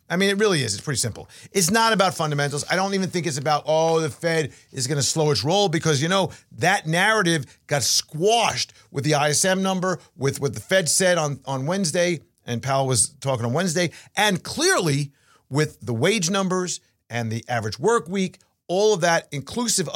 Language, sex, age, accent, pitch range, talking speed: English, male, 50-69, American, 125-185 Hz, 200 wpm